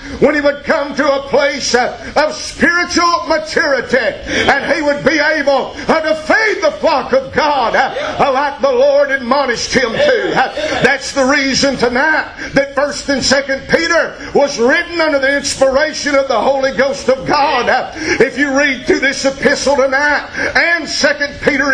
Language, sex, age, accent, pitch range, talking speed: English, male, 50-69, American, 265-290 Hz, 155 wpm